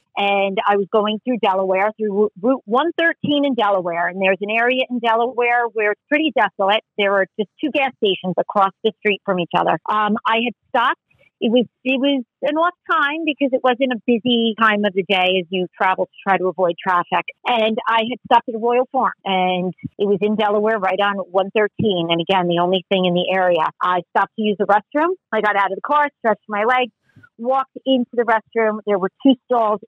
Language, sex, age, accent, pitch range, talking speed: English, female, 40-59, American, 190-235 Hz, 215 wpm